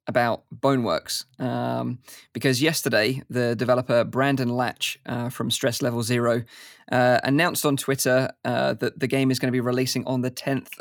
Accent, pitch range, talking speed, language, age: British, 125-140 Hz, 165 wpm, English, 20-39